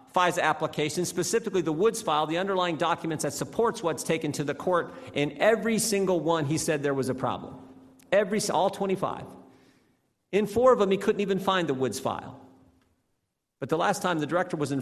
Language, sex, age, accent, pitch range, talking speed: English, male, 50-69, American, 130-180 Hz, 195 wpm